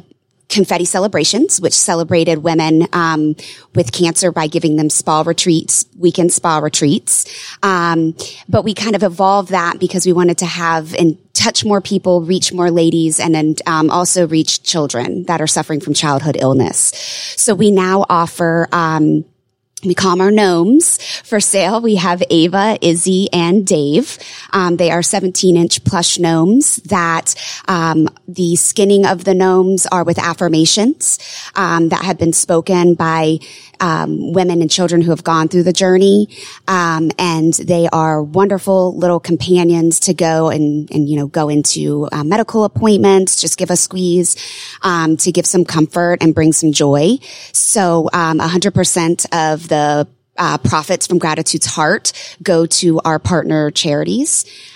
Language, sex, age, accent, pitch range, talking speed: English, female, 20-39, American, 160-185 Hz, 155 wpm